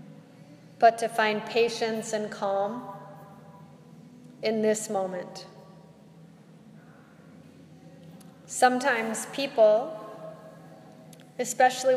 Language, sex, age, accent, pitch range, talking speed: English, female, 30-49, American, 195-225 Hz, 60 wpm